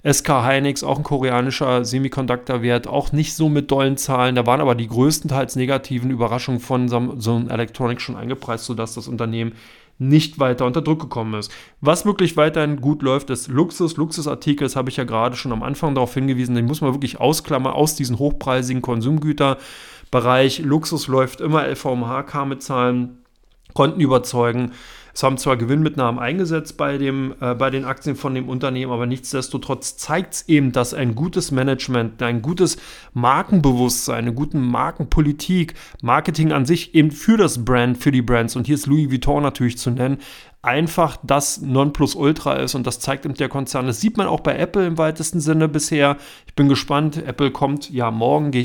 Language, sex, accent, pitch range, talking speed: German, male, German, 125-150 Hz, 180 wpm